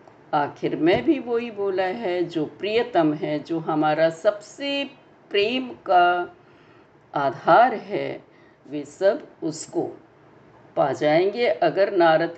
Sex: female